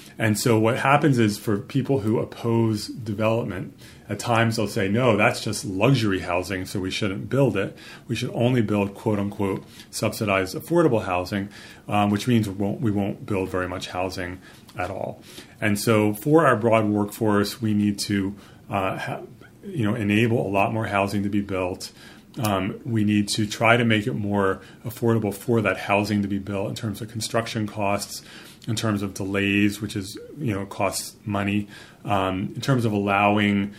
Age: 30-49